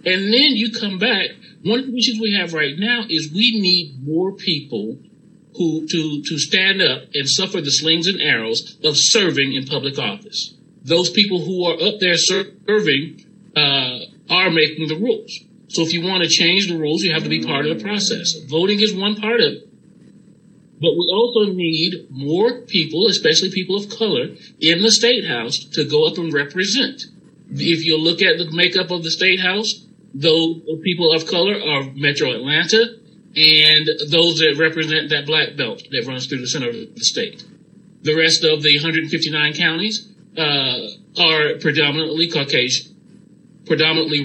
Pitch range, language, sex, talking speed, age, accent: 155-205 Hz, English, male, 180 wpm, 40-59, American